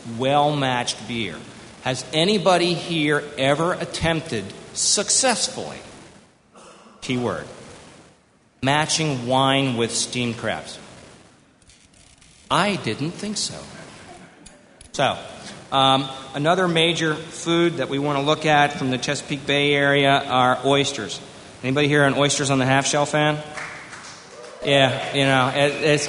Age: 40-59